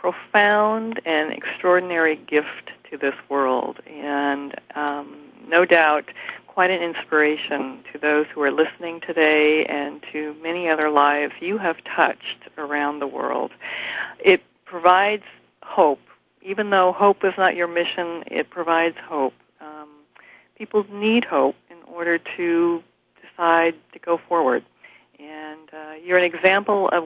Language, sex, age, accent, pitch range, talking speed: English, female, 50-69, American, 150-180 Hz, 135 wpm